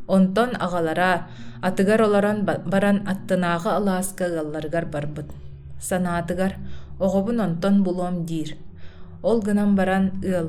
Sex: female